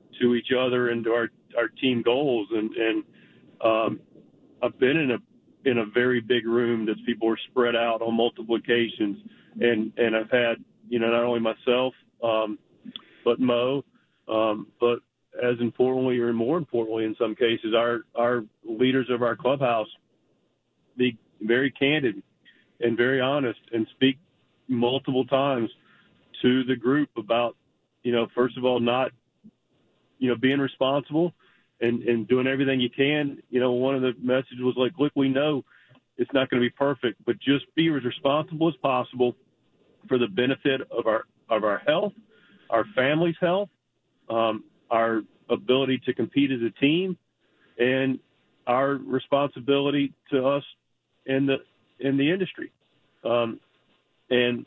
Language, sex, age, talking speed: English, male, 40-59, 155 wpm